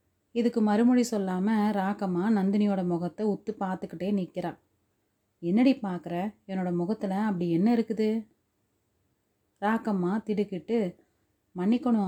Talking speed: 95 wpm